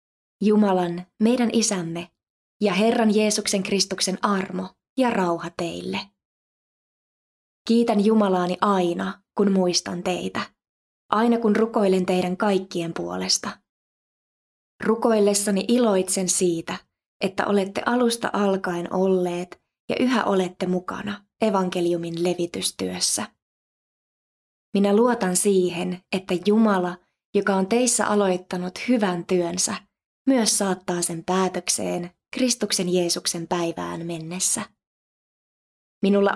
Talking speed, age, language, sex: 95 wpm, 20-39, Finnish, female